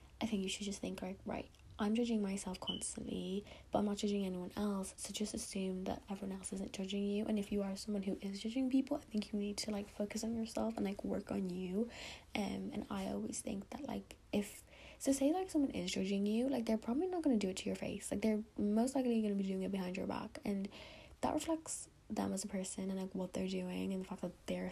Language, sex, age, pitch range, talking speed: English, female, 10-29, 190-230 Hz, 255 wpm